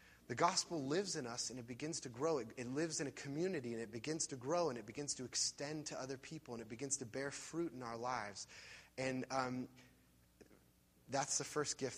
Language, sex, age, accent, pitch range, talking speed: English, male, 30-49, American, 105-140 Hz, 220 wpm